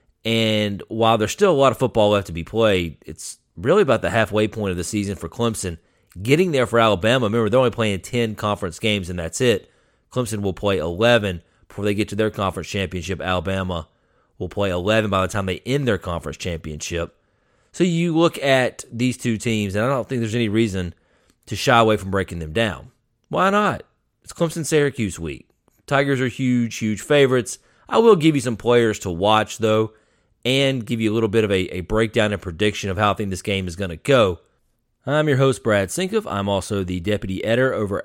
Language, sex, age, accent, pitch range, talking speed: English, male, 30-49, American, 95-125 Hz, 210 wpm